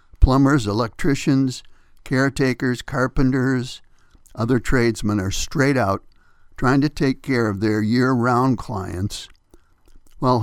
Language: English